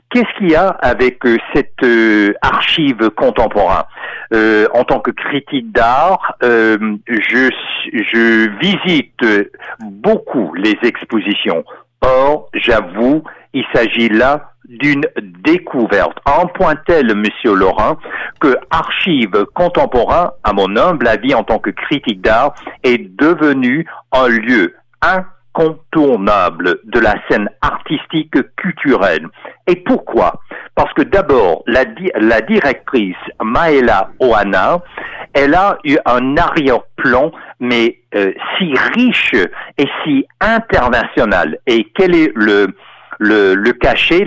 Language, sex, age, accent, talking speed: French, male, 60-79, French, 115 wpm